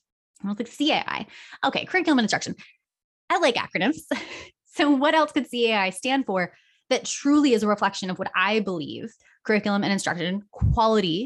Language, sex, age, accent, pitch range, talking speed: English, female, 20-39, American, 185-255 Hz, 165 wpm